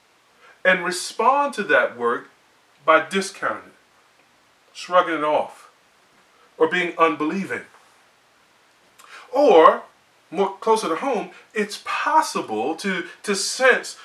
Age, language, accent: 40-59, English, American